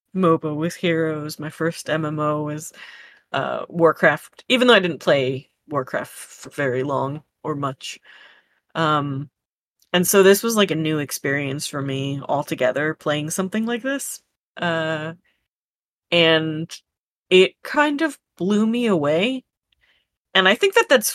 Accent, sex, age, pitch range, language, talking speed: American, female, 30-49, 150-200 Hz, English, 140 wpm